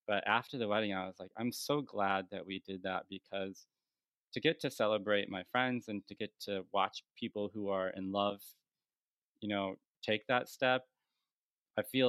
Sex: male